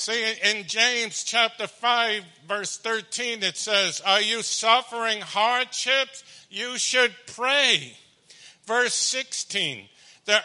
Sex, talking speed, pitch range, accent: male, 110 wpm, 200-245 Hz, American